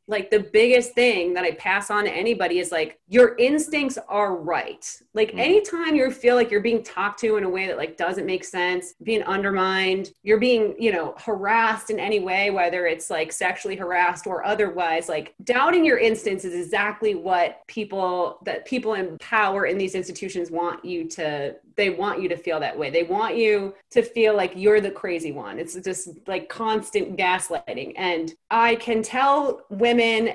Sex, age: female, 30-49